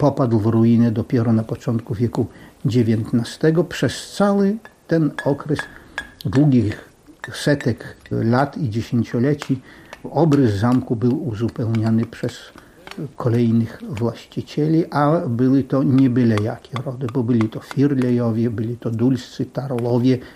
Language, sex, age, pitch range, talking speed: Polish, male, 50-69, 115-135 Hz, 115 wpm